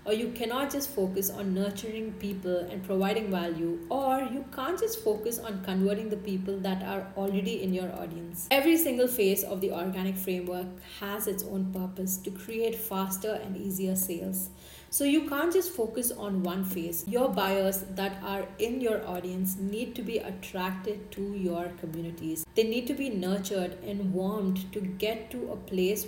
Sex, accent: female, Indian